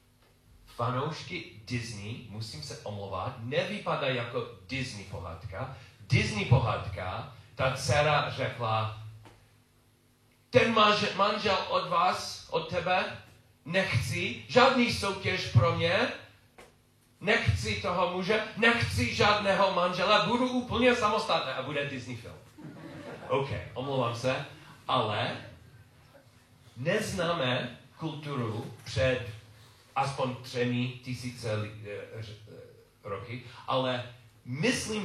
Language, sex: Czech, male